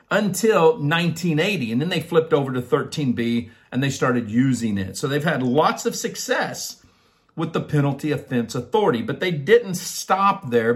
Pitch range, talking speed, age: 125-170 Hz, 165 wpm, 50-69